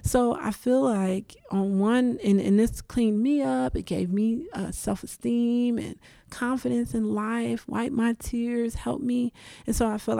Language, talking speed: English, 175 wpm